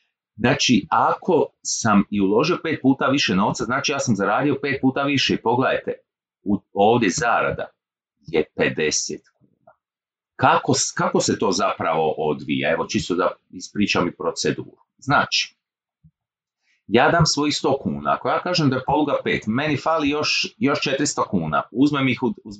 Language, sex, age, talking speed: Croatian, male, 40-59, 150 wpm